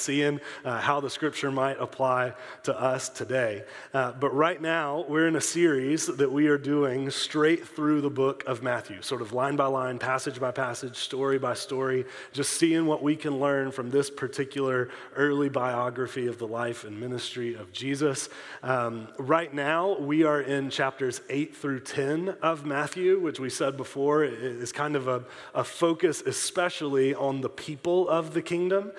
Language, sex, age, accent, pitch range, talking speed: English, male, 30-49, American, 130-155 Hz, 180 wpm